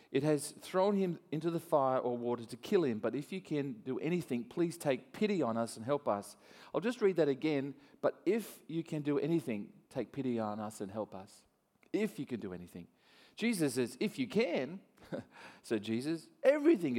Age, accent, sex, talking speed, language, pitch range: 40-59, Australian, male, 200 wpm, English, 105-150 Hz